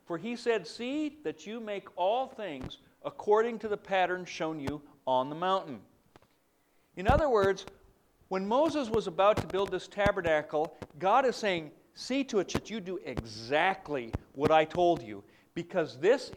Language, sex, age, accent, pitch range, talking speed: English, male, 50-69, American, 170-235 Hz, 165 wpm